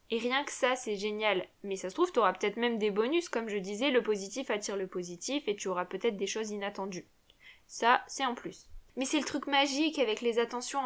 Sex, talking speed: female, 240 wpm